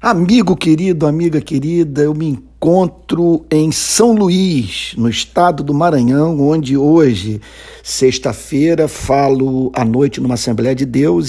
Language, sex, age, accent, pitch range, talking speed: Portuguese, male, 50-69, Brazilian, 125-160 Hz, 130 wpm